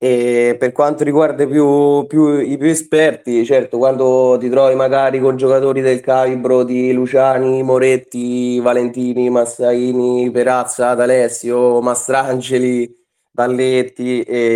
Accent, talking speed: native, 115 wpm